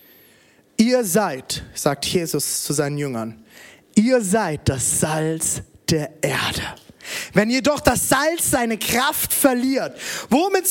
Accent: German